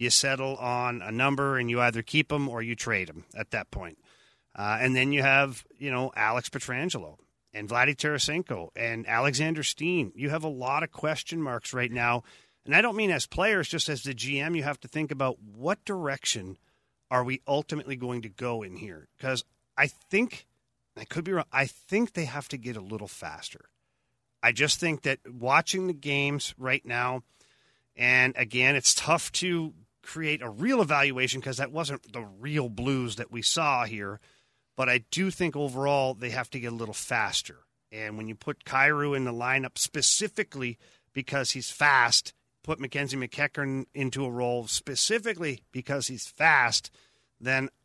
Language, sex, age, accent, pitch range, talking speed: English, male, 40-59, American, 120-150 Hz, 180 wpm